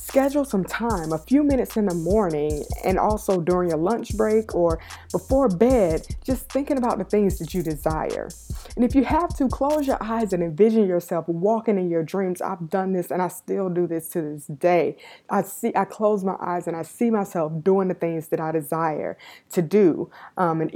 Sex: female